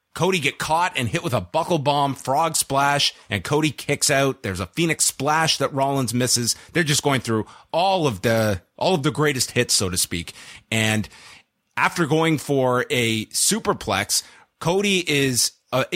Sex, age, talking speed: male, 30-49, 175 wpm